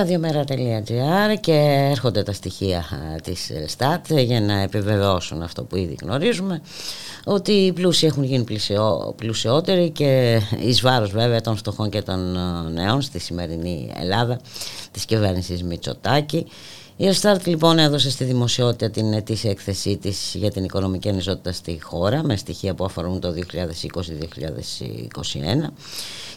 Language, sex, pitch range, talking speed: Greek, female, 90-130 Hz, 125 wpm